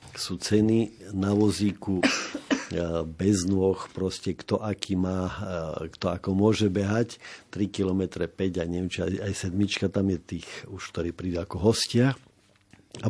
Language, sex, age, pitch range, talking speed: Slovak, male, 50-69, 95-110 Hz, 135 wpm